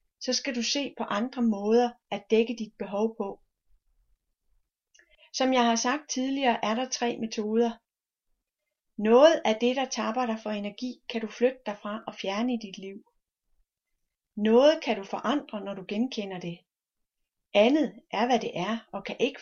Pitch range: 200-245 Hz